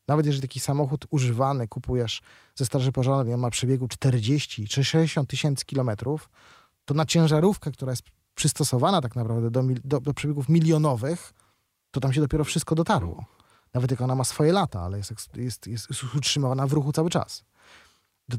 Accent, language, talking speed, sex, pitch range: native, Polish, 175 wpm, male, 115-155 Hz